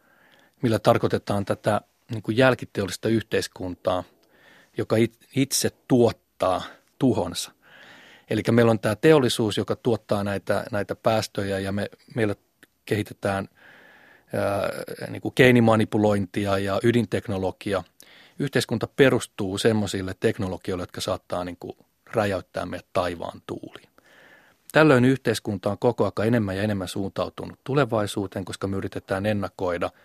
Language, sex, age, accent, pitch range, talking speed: Finnish, male, 30-49, native, 100-120 Hz, 100 wpm